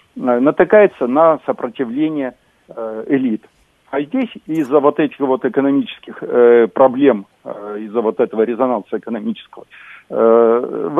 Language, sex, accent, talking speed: Russian, male, native, 100 wpm